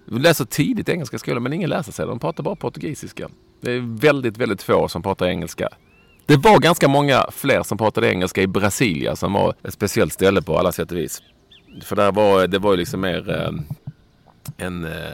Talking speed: 185 wpm